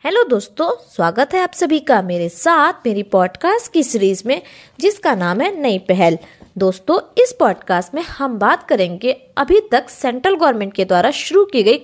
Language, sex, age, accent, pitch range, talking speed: Hindi, female, 20-39, native, 205-345 Hz, 175 wpm